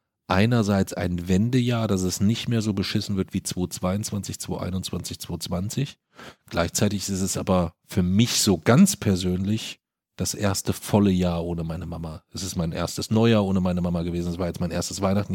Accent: German